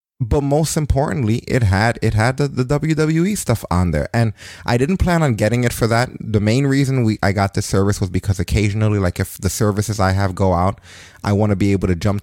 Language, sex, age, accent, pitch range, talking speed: English, male, 30-49, American, 95-140 Hz, 235 wpm